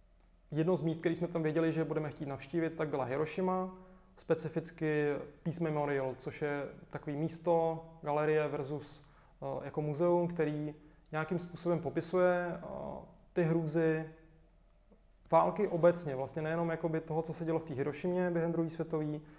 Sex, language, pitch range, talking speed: male, Czech, 155-180 Hz, 140 wpm